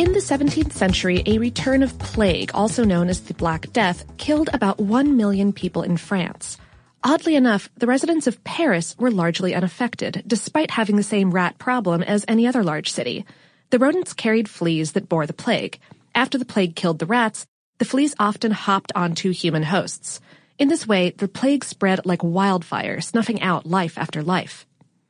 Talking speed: 180 wpm